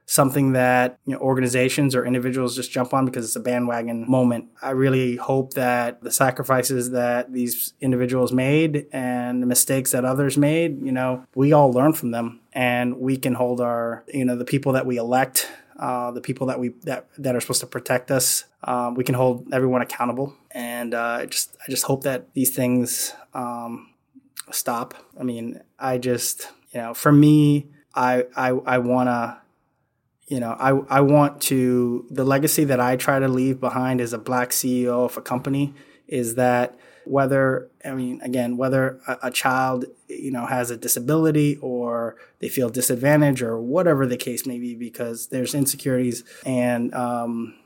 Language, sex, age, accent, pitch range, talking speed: English, male, 20-39, American, 125-135 Hz, 180 wpm